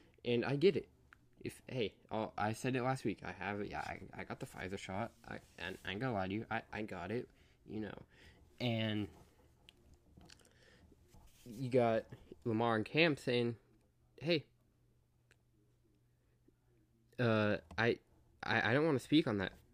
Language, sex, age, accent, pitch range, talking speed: English, male, 10-29, American, 105-135 Hz, 160 wpm